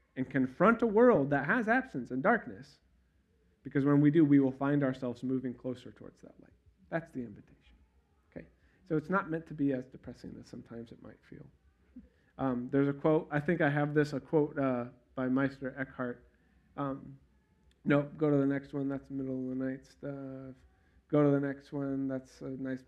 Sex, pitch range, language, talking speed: male, 95-145 Hz, English, 200 wpm